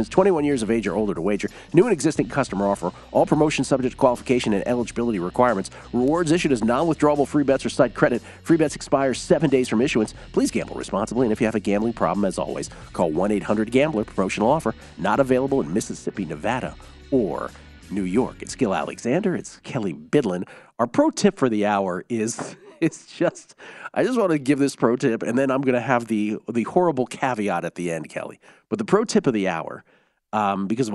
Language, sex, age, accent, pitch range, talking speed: English, male, 40-59, American, 105-145 Hz, 205 wpm